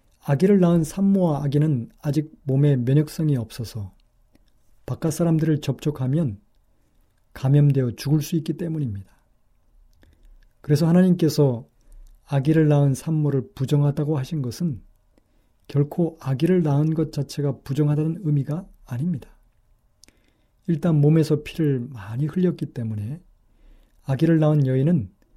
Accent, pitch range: native, 125-160 Hz